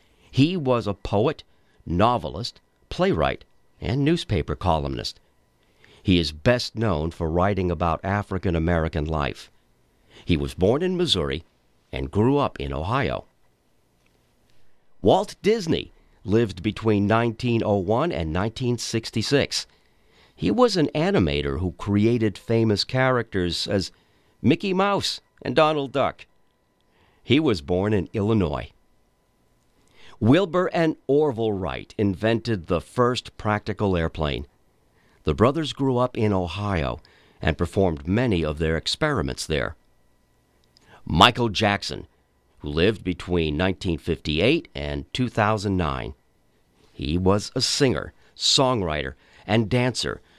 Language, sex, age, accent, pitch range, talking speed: English, male, 50-69, American, 80-120 Hz, 110 wpm